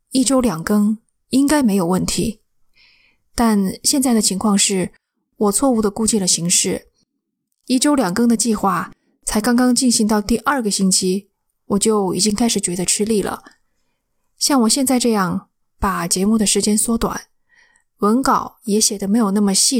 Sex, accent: female, native